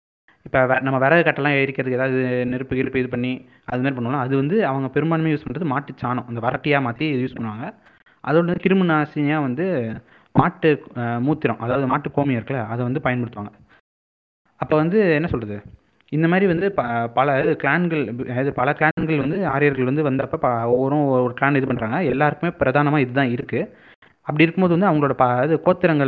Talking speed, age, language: 155 wpm, 20-39, Tamil